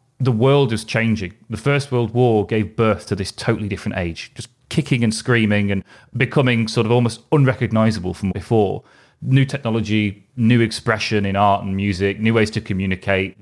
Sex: male